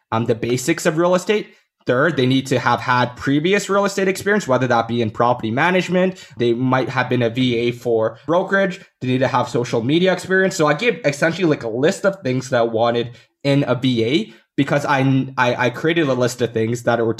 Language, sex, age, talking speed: English, male, 20-39, 220 wpm